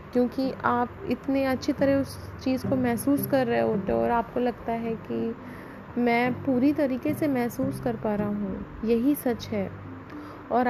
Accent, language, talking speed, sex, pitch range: native, Hindi, 175 wpm, female, 215-255 Hz